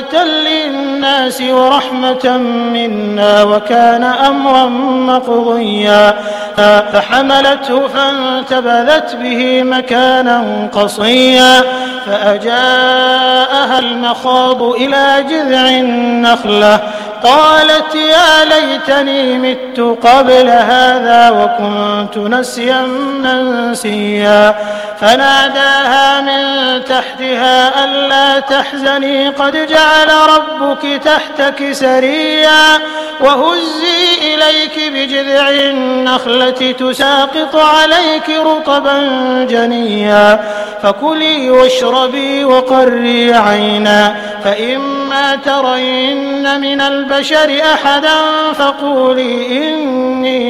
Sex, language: male, Arabic